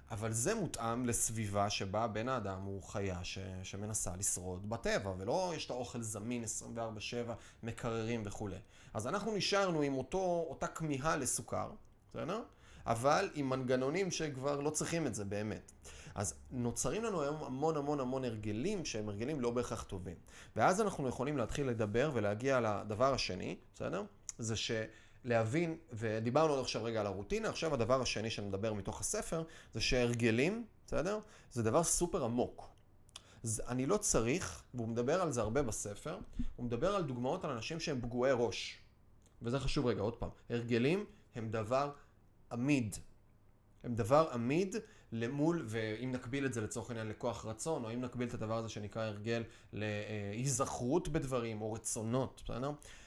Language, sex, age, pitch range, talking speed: Hebrew, male, 30-49, 105-135 Hz, 155 wpm